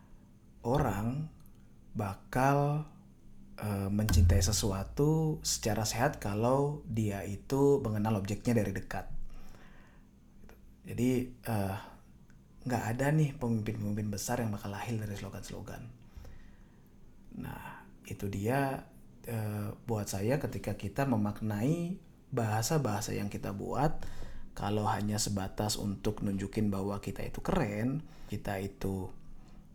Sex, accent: male, native